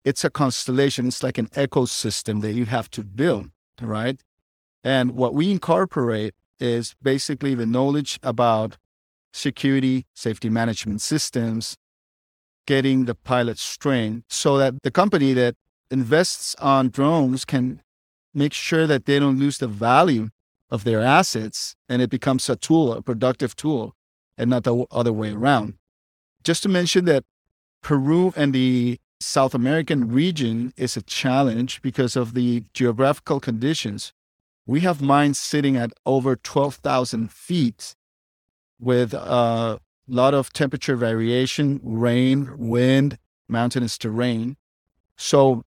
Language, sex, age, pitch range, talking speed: English, male, 50-69, 115-140 Hz, 135 wpm